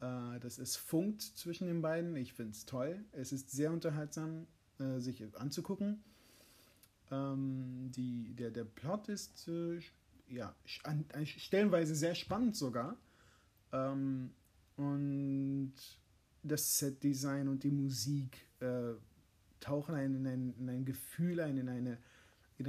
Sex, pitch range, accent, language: male, 125-160 Hz, German, German